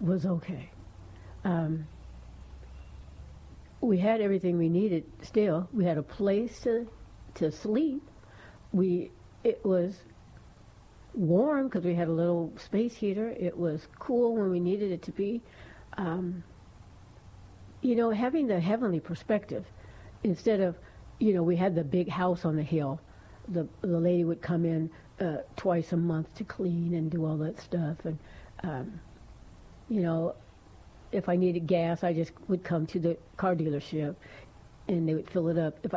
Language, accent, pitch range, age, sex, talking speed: English, American, 155-195 Hz, 60-79, female, 160 wpm